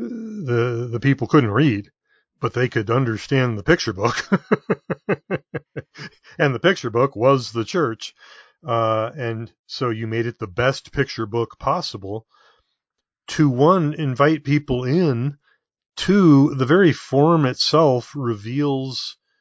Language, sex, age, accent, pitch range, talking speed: English, male, 40-59, American, 110-140 Hz, 125 wpm